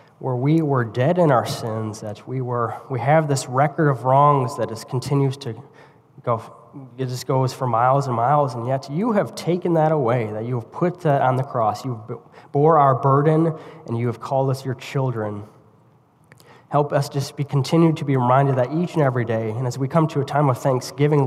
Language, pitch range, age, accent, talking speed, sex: English, 120-145 Hz, 20-39, American, 215 wpm, male